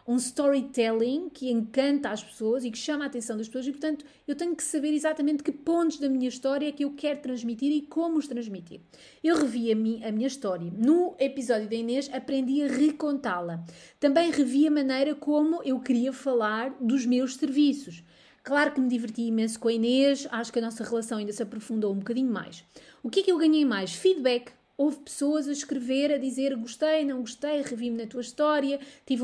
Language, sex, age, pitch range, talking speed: English, female, 30-49, 235-300 Hz, 200 wpm